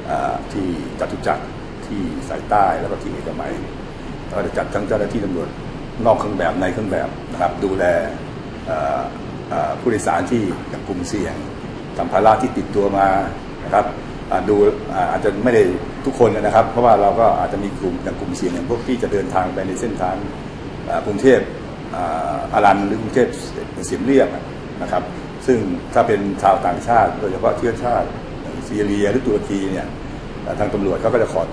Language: Thai